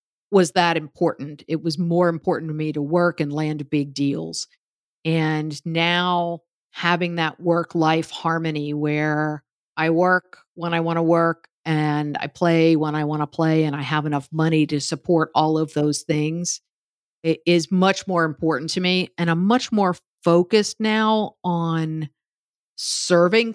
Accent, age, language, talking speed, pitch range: American, 50-69, English, 160 wpm, 160-190 Hz